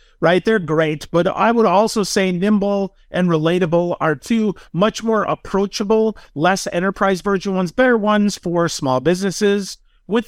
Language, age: English, 50-69